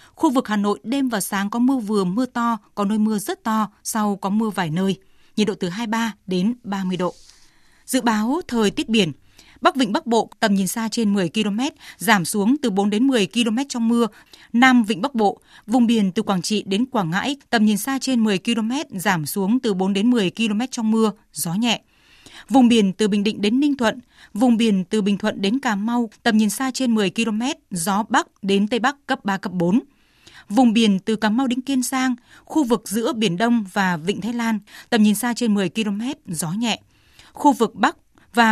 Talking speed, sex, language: 220 wpm, female, Vietnamese